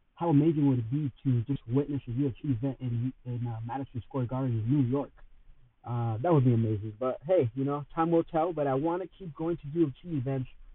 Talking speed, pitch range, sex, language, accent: 230 wpm, 125-170 Hz, male, English, American